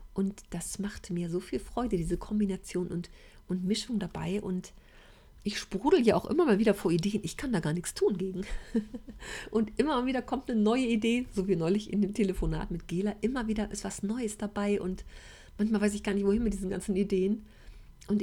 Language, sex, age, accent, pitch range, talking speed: German, female, 40-59, German, 180-210 Hz, 210 wpm